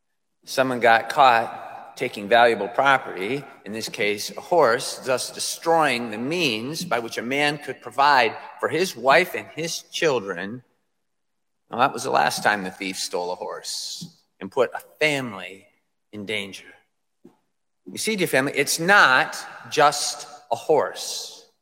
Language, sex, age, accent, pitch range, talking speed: English, male, 40-59, American, 110-140 Hz, 150 wpm